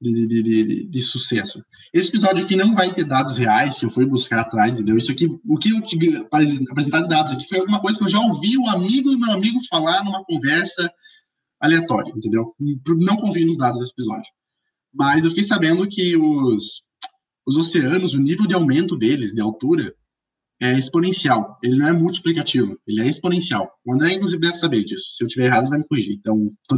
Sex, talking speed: male, 205 wpm